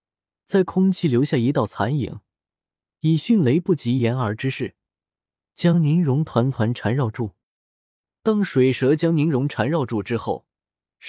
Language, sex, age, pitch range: Chinese, male, 20-39, 110-165 Hz